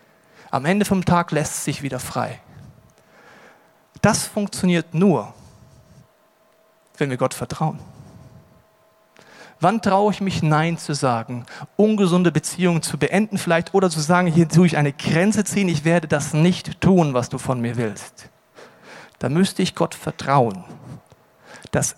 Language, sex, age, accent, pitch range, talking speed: German, male, 40-59, German, 140-180 Hz, 140 wpm